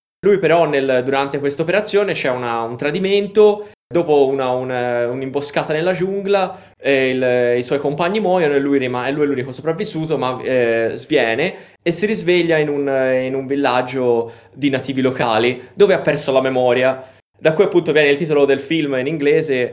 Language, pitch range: Italian, 120-155 Hz